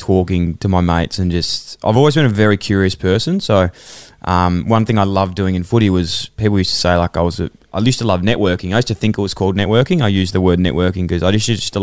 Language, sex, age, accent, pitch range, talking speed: English, male, 20-39, Australian, 95-110 Hz, 270 wpm